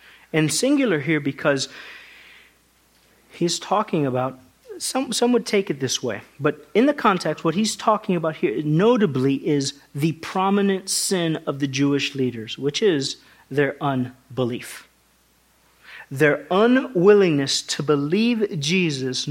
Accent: American